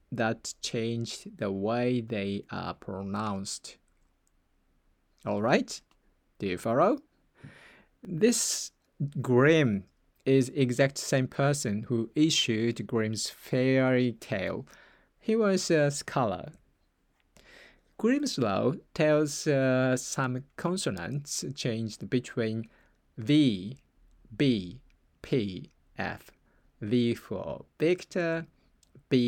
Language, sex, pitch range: English, male, 115-145 Hz